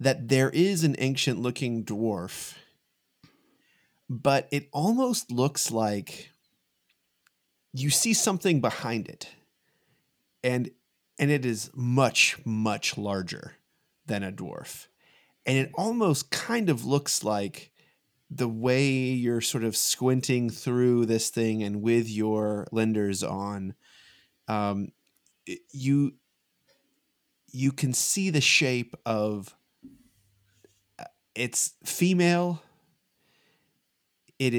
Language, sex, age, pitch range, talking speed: English, male, 30-49, 110-140 Hz, 100 wpm